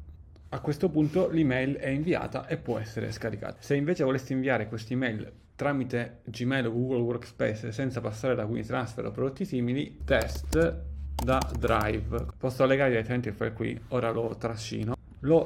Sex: male